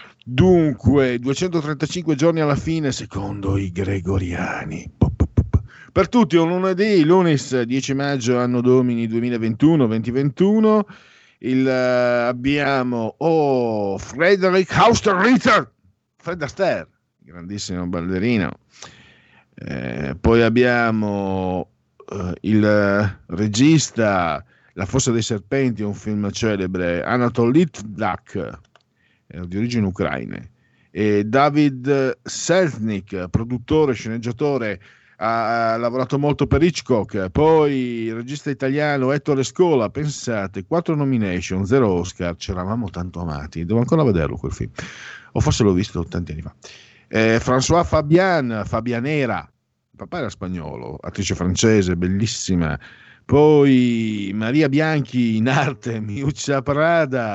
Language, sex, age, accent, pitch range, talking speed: Italian, male, 50-69, native, 100-145 Hz, 105 wpm